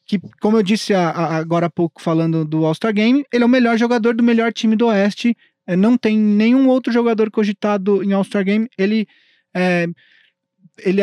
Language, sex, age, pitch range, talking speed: Portuguese, male, 20-39, 180-245 Hz, 180 wpm